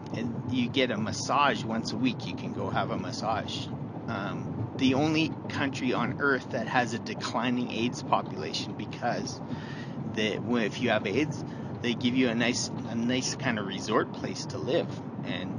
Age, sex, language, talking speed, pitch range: 30-49, male, English, 175 wpm, 120-135 Hz